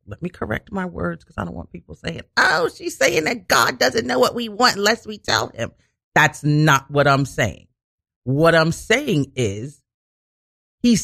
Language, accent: English, American